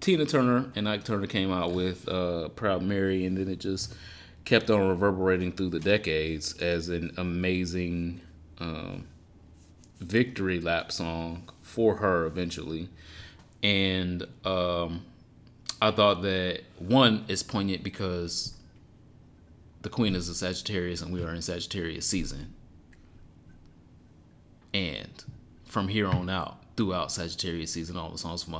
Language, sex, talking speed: English, male, 135 wpm